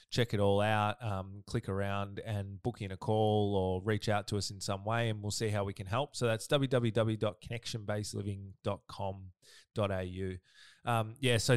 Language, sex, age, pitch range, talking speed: English, male, 20-39, 100-115 Hz, 170 wpm